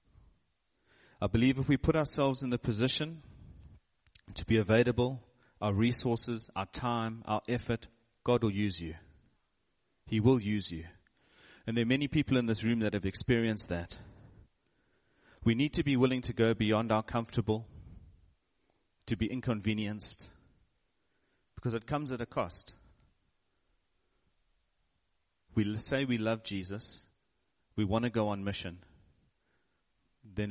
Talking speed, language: 135 wpm, English